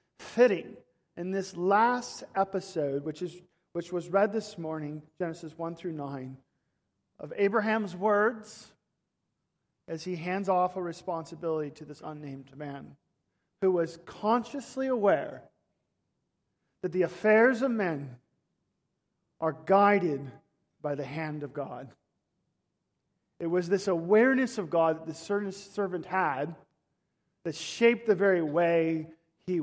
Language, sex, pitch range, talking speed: English, male, 155-205 Hz, 125 wpm